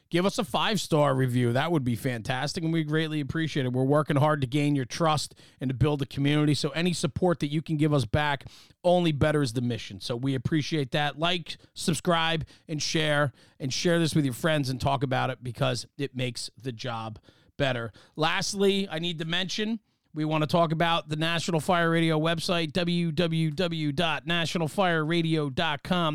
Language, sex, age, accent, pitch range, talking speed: English, male, 40-59, American, 140-175 Hz, 185 wpm